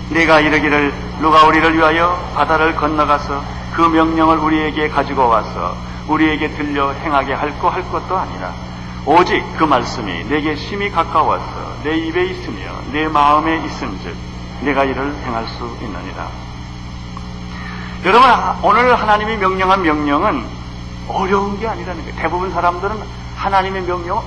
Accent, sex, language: native, male, Korean